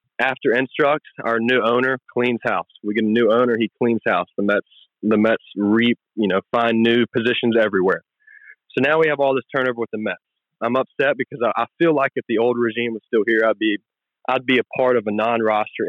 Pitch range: 110-125 Hz